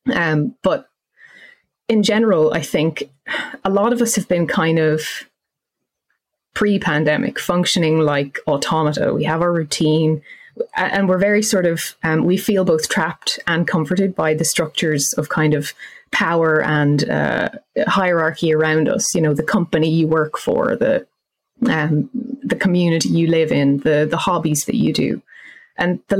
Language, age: English, 20-39